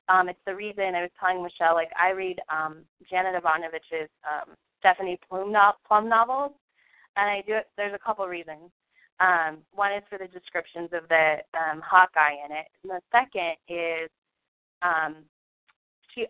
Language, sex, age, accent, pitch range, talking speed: English, female, 20-39, American, 165-200 Hz, 170 wpm